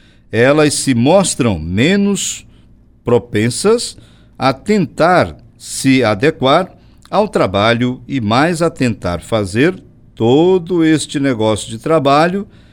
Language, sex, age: English, male, 60-79